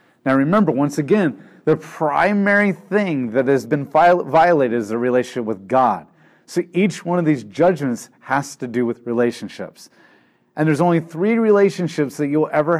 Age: 30-49